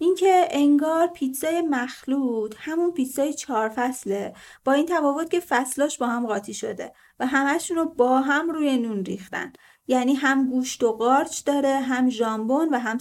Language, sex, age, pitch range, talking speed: Persian, female, 30-49, 235-295 Hz, 155 wpm